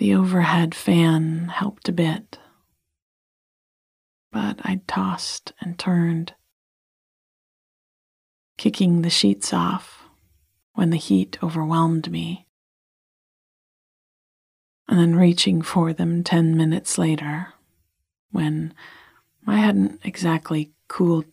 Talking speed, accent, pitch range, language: 95 wpm, American, 150-185 Hz, English